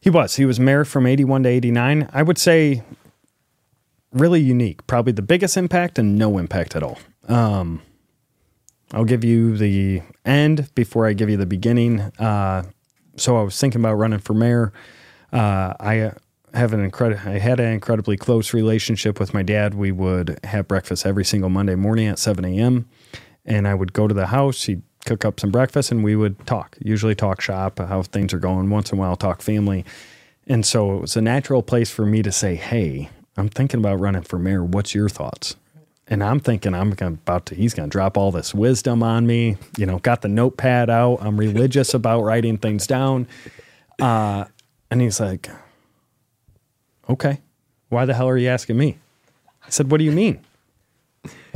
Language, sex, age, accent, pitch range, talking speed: English, male, 30-49, American, 100-125 Hz, 190 wpm